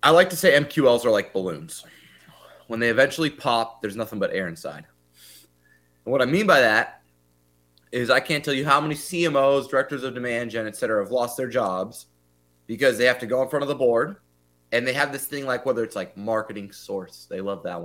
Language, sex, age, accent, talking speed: English, male, 20-39, American, 220 wpm